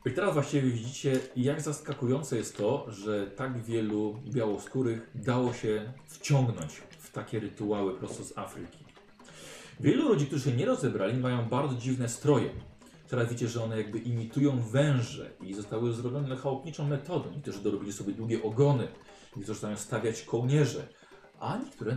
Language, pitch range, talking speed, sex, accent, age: Polish, 110-140 Hz, 155 wpm, male, native, 40-59